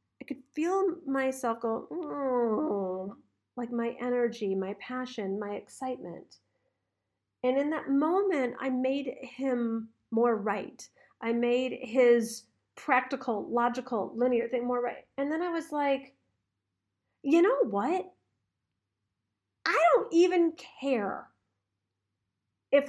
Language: English